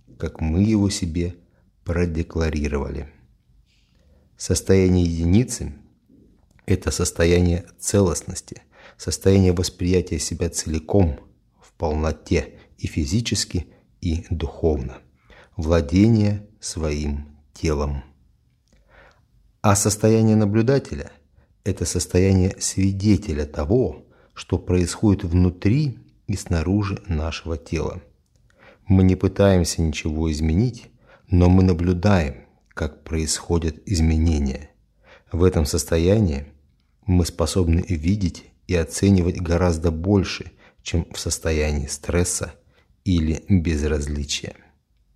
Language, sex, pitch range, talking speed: Russian, male, 80-95 Hz, 85 wpm